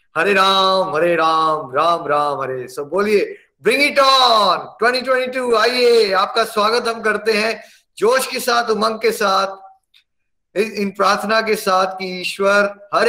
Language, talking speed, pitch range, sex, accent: Hindi, 135 wpm, 175-210 Hz, male, native